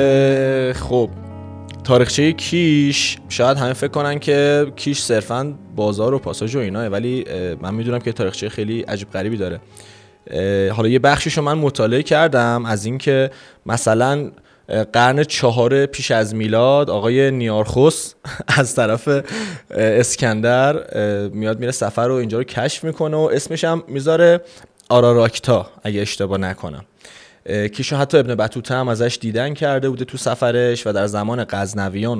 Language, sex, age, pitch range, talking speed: Persian, male, 20-39, 105-140 Hz, 140 wpm